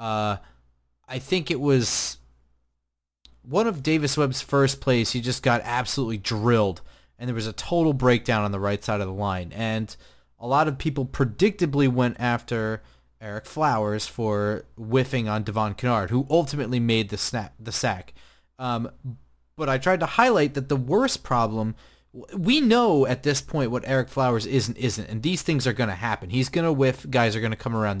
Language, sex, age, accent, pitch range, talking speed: English, male, 30-49, American, 110-140 Hz, 185 wpm